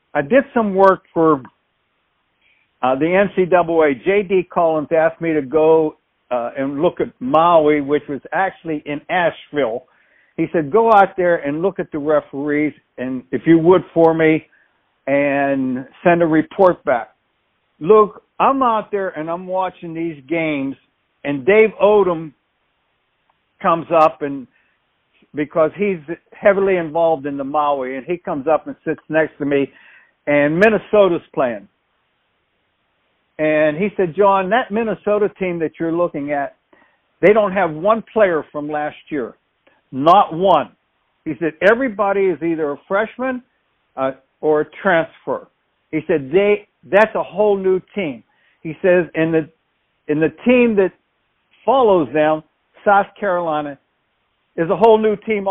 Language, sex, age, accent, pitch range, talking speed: English, male, 60-79, American, 150-195 Hz, 145 wpm